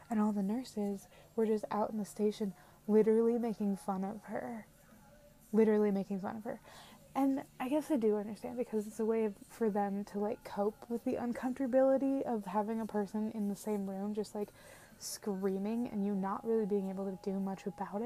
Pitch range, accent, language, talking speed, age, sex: 200-225 Hz, American, English, 195 wpm, 20-39, female